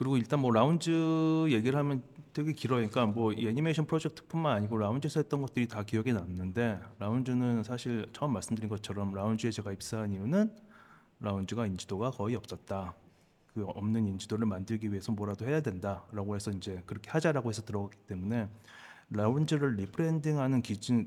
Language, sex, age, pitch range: Korean, male, 30-49, 100-125 Hz